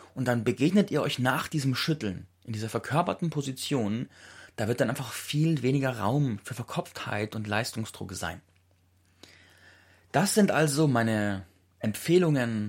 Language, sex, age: German, male, 30-49